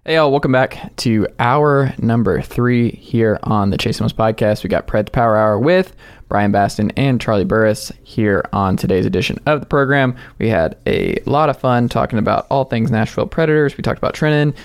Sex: male